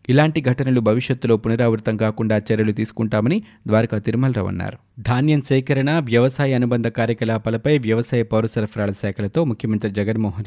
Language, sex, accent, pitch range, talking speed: Telugu, male, native, 110-140 Hz, 95 wpm